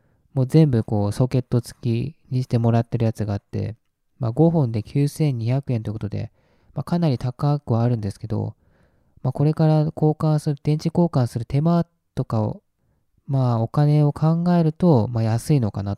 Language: Japanese